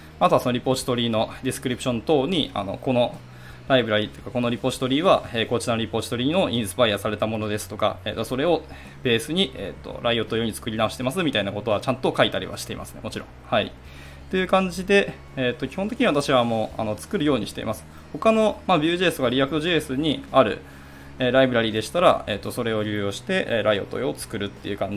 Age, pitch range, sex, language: 20-39, 100-140 Hz, male, Japanese